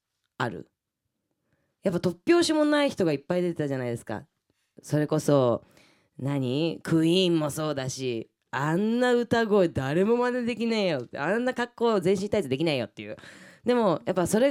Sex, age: female, 20-39